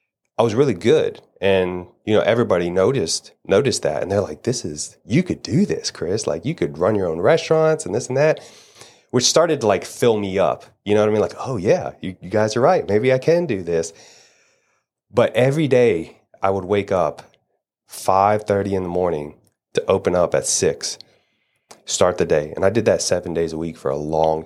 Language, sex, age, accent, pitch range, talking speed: English, male, 30-49, American, 85-110 Hz, 215 wpm